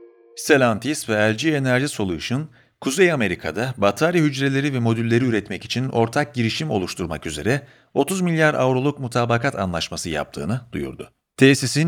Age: 40-59